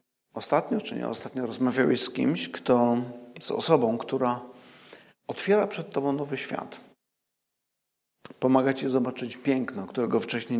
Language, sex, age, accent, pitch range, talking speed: Polish, male, 50-69, native, 130-150 Hz, 125 wpm